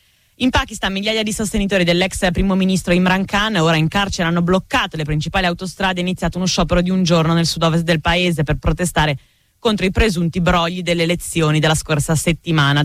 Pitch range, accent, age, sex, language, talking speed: 165-200 Hz, native, 20-39, female, Italian, 195 wpm